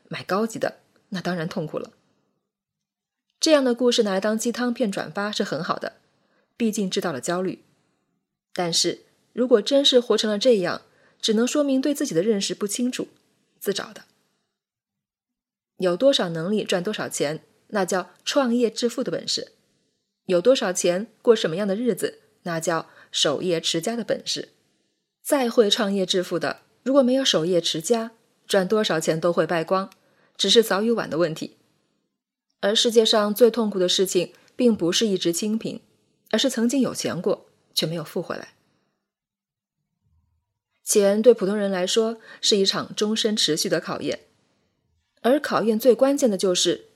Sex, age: female, 20-39